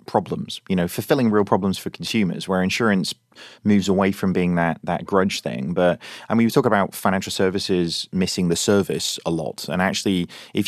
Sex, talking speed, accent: male, 185 wpm, British